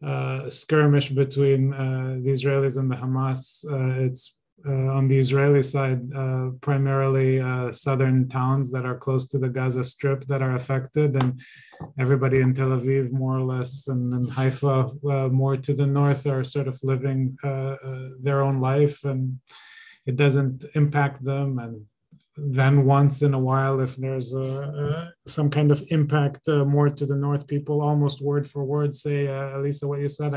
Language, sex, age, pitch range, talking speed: English, male, 20-39, 130-145 Hz, 180 wpm